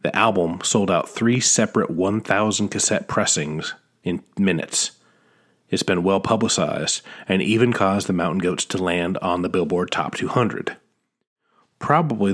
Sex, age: male, 40-59